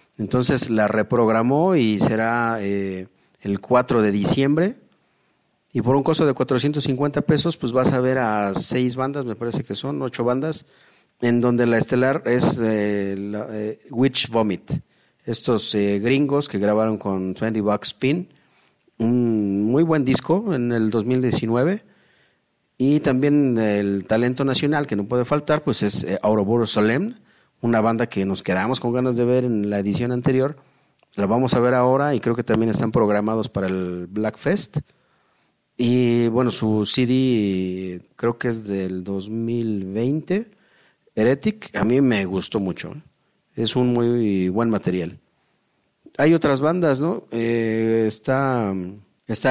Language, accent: Spanish, Mexican